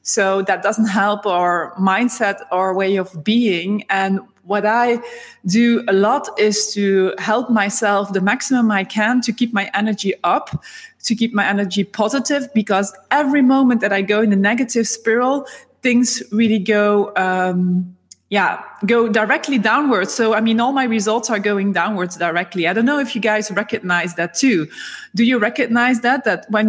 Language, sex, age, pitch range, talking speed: Dutch, female, 20-39, 195-245 Hz, 175 wpm